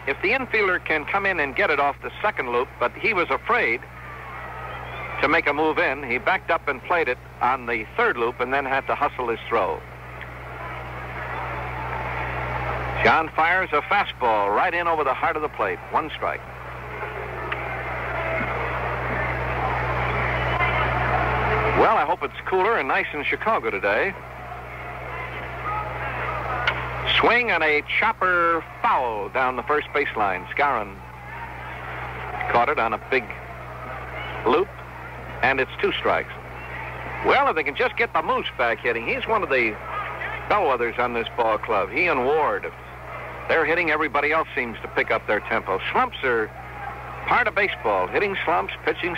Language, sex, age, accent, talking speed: English, male, 60-79, American, 150 wpm